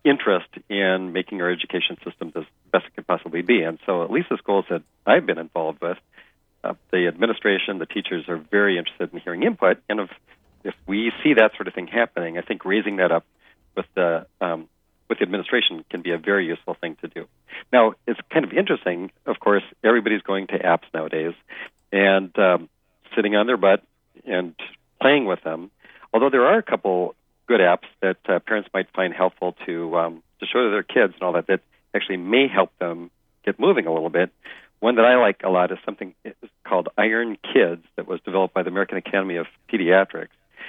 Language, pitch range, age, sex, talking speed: English, 85-110 Hz, 40-59, male, 200 wpm